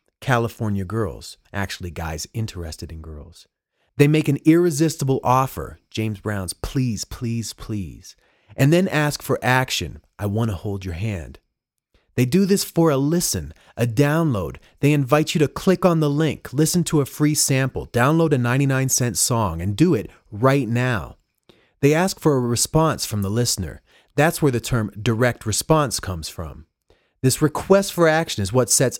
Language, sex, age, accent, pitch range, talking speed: English, male, 30-49, American, 105-150 Hz, 170 wpm